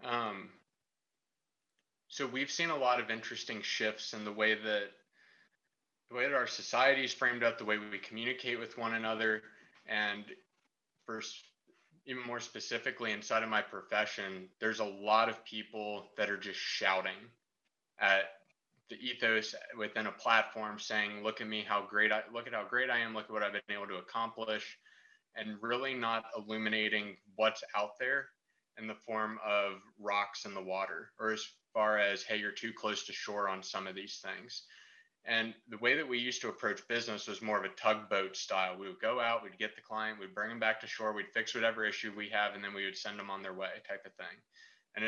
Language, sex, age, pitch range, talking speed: English, male, 20-39, 105-115 Hz, 200 wpm